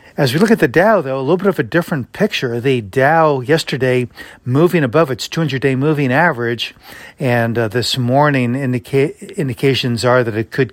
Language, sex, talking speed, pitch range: English, male, 180 wpm, 120-145 Hz